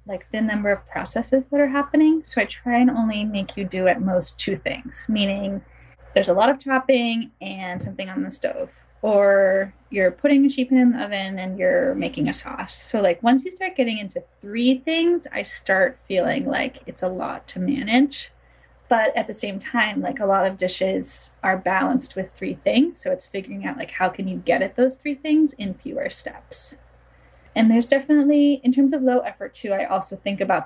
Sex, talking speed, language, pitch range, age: female, 205 wpm, English, 195-270 Hz, 10-29